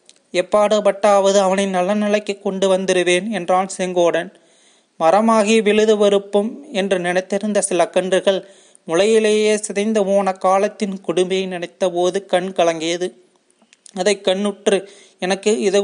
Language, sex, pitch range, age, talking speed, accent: Tamil, male, 185-210 Hz, 30-49, 95 wpm, native